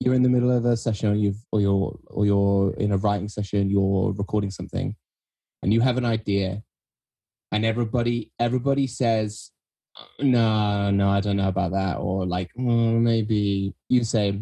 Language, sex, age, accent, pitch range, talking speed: English, male, 20-39, British, 100-130 Hz, 170 wpm